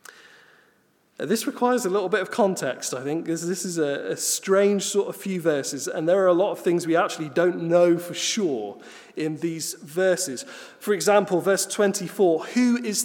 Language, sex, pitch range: English, male, 165-220 Hz